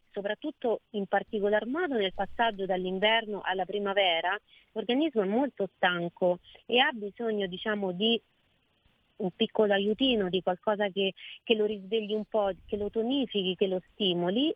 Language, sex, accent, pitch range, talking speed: Italian, female, native, 190-255 Hz, 145 wpm